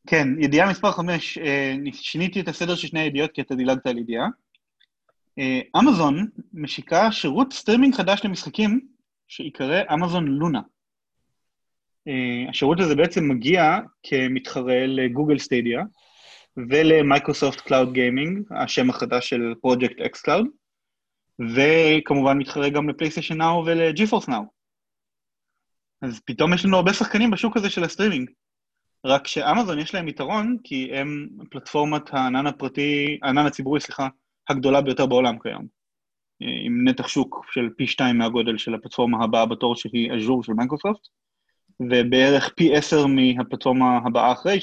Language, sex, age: Hebrew, male, 30-49